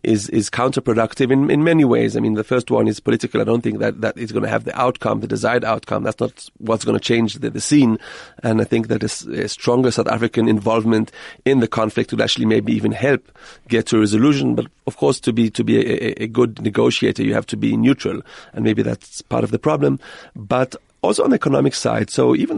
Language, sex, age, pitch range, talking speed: English, male, 40-59, 110-125 Hz, 240 wpm